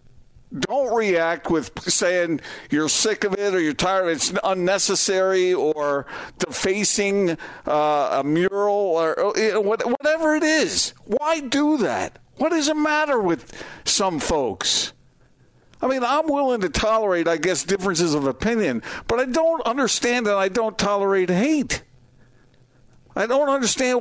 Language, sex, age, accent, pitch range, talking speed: English, male, 60-79, American, 170-240 Hz, 145 wpm